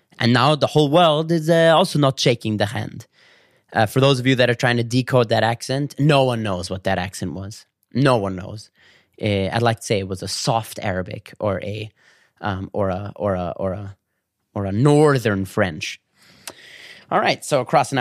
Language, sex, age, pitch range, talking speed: English, male, 20-39, 105-145 Hz, 205 wpm